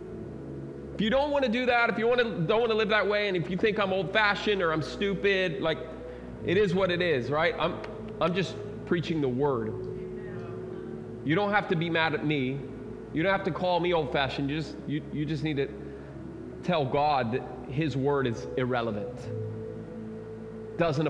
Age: 30-49